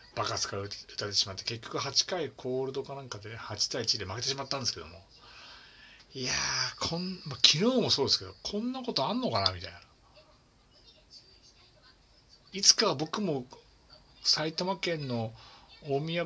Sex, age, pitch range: male, 60-79, 105-170 Hz